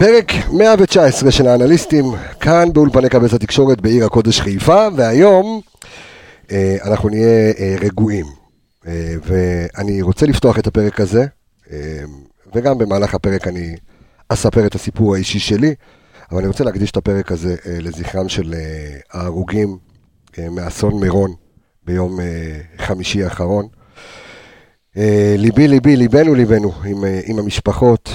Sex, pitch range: male, 95-120 Hz